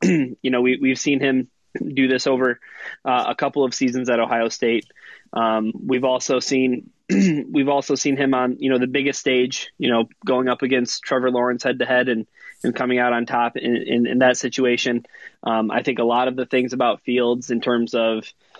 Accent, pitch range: American, 120-140 Hz